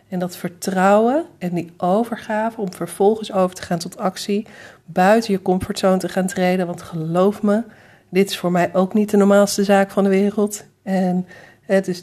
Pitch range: 180-205 Hz